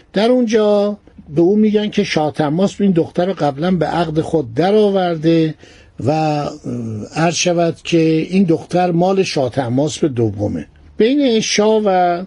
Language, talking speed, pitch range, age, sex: Persian, 130 wpm, 150-190 Hz, 60-79, male